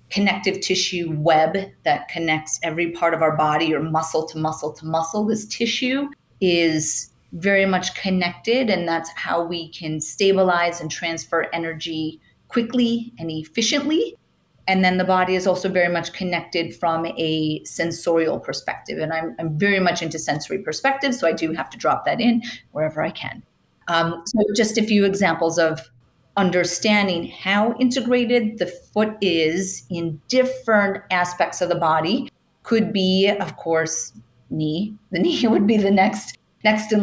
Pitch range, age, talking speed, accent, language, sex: 165-210 Hz, 30-49, 160 wpm, American, English, female